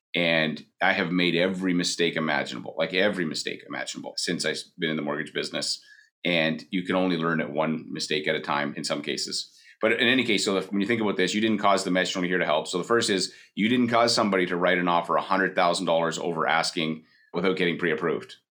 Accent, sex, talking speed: American, male, 225 wpm